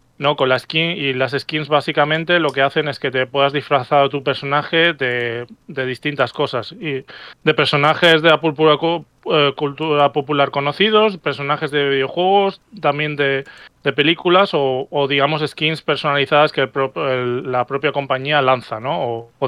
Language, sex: Spanish, male